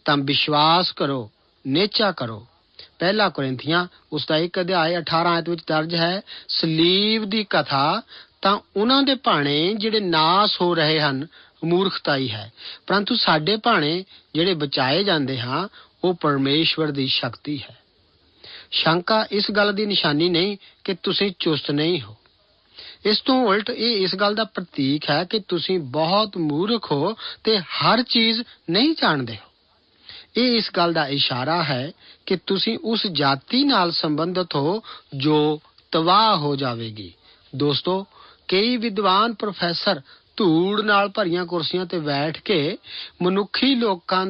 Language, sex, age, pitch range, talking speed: Punjabi, male, 50-69, 150-205 Hz, 130 wpm